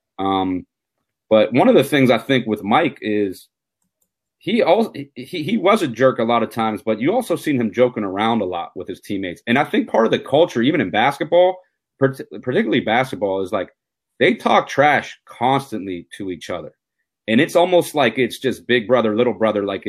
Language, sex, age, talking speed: English, male, 30-49, 200 wpm